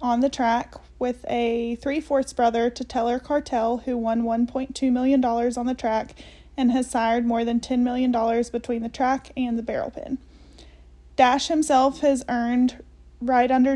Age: 30-49